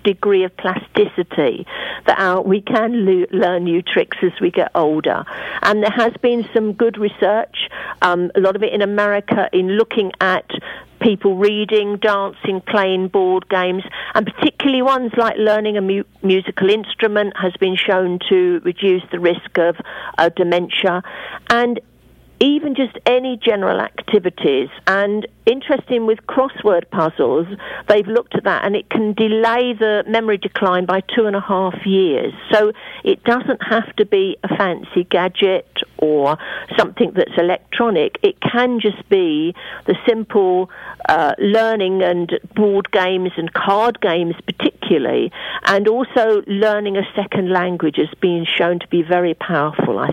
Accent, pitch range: British, 185-225 Hz